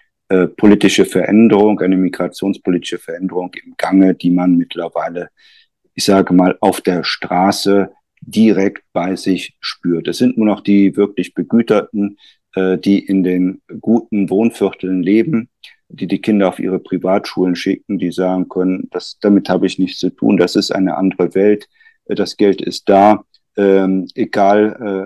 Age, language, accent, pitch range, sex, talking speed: 50-69, German, German, 90-105 Hz, male, 150 wpm